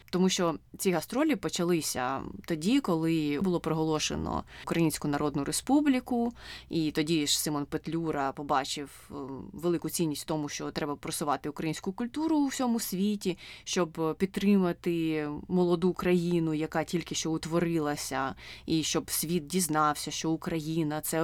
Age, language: 20-39, Ukrainian